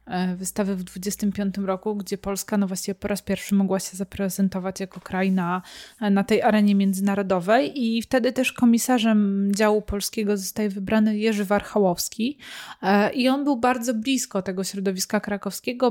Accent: native